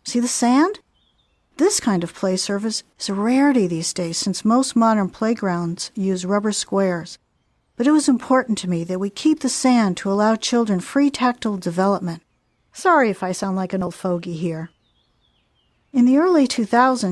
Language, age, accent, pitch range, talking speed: English, 50-69, American, 180-245 Hz, 175 wpm